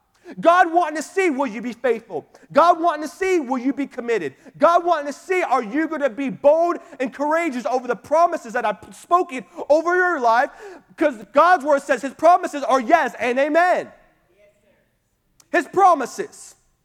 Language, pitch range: English, 240-330 Hz